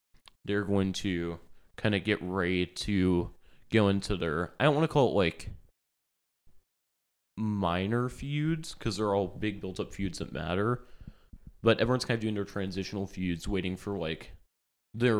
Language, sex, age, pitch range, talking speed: English, male, 20-39, 90-110 Hz, 160 wpm